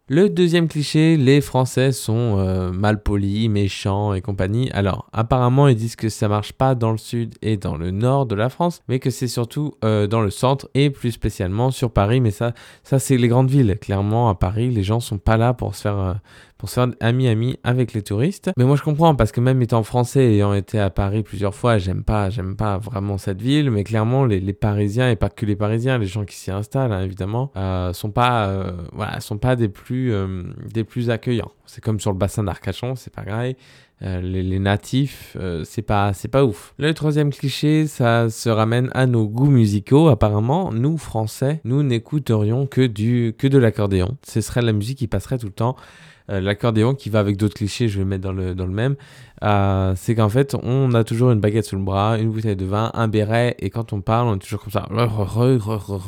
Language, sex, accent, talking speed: French, male, French, 230 wpm